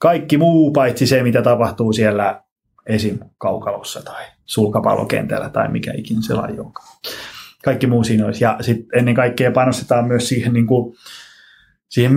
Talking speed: 150 wpm